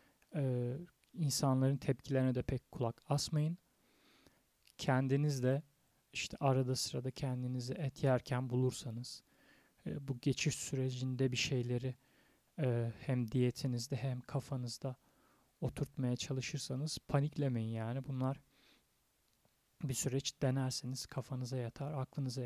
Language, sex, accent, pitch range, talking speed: Turkish, male, native, 125-140 Hz, 100 wpm